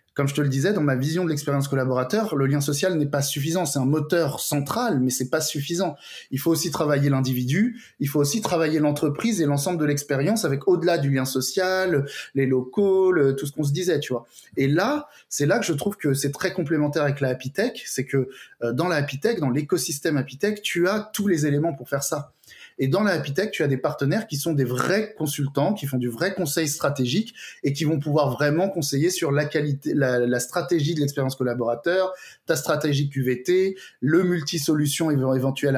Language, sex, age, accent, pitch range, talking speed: French, male, 20-39, French, 135-170 Hz, 210 wpm